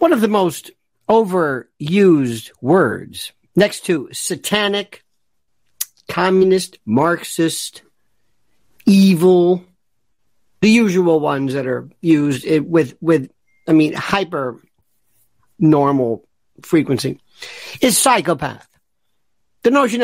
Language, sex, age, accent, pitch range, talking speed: English, male, 50-69, American, 155-220 Hz, 85 wpm